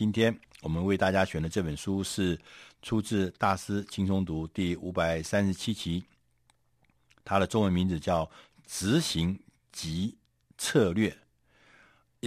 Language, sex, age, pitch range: Chinese, male, 60-79, 85-110 Hz